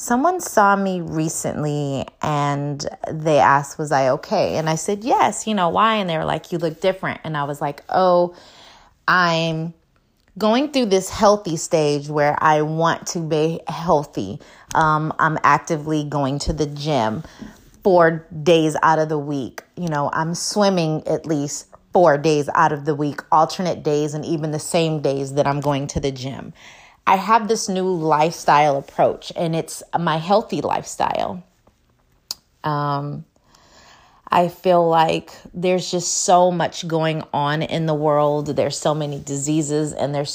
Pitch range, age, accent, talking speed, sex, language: 145-175 Hz, 30-49, American, 160 wpm, female, English